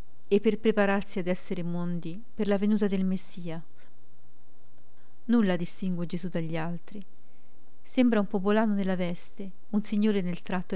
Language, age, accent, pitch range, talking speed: Italian, 40-59, native, 180-215 Hz, 140 wpm